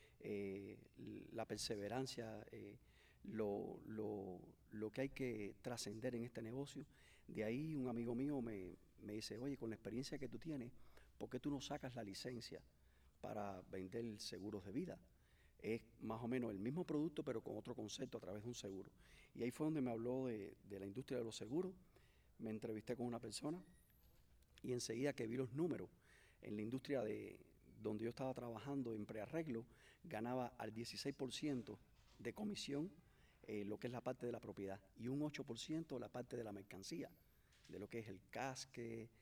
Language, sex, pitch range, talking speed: English, male, 105-130 Hz, 180 wpm